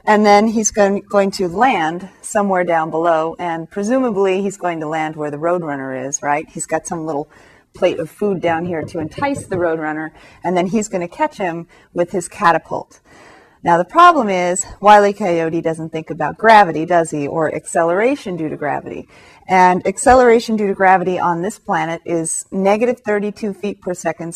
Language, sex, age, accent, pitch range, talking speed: English, female, 30-49, American, 165-215 Hz, 180 wpm